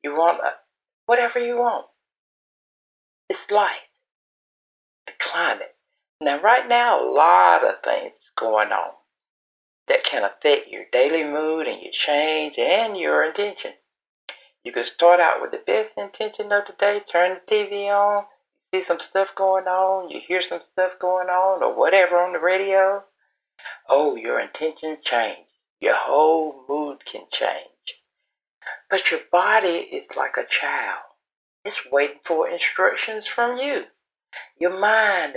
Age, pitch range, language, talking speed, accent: 60-79, 180-265 Hz, English, 145 wpm, American